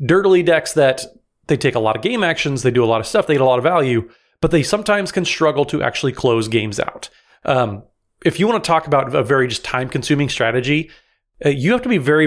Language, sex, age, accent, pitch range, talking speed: English, male, 30-49, American, 120-155 Hz, 245 wpm